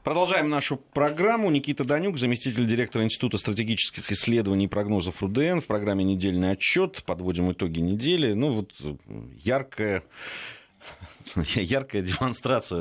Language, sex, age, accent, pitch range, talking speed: Russian, male, 30-49, native, 80-125 Hz, 115 wpm